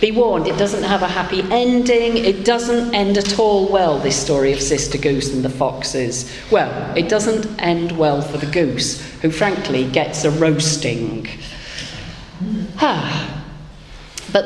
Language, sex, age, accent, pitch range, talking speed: English, female, 50-69, British, 140-205 Hz, 150 wpm